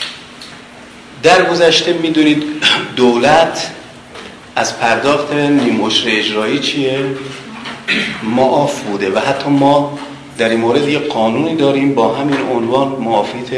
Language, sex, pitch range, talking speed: Persian, male, 110-140 Hz, 105 wpm